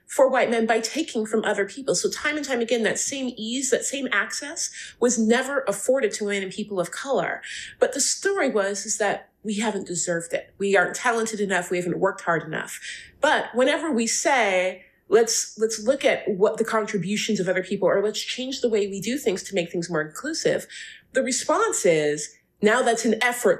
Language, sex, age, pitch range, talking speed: English, female, 30-49, 195-240 Hz, 205 wpm